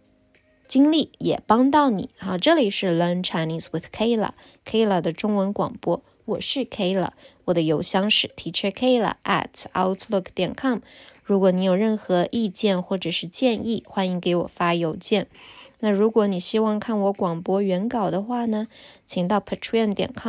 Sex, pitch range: female, 185-230 Hz